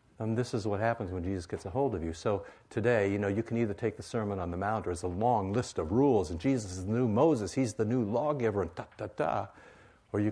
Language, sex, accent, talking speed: English, male, American, 280 wpm